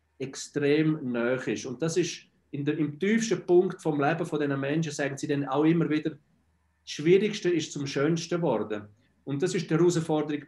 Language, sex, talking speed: German, male, 185 wpm